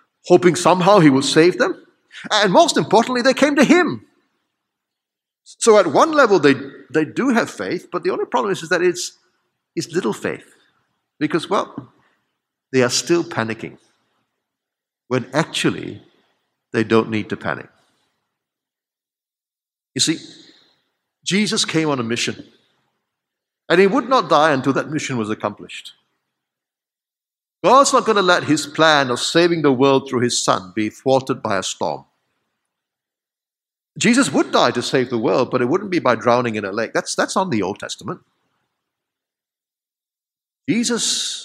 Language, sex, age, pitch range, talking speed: English, male, 60-79, 125-215 Hz, 150 wpm